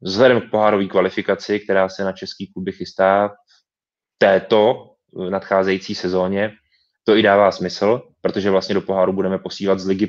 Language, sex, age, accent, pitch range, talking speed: Czech, male, 20-39, native, 95-105 Hz, 155 wpm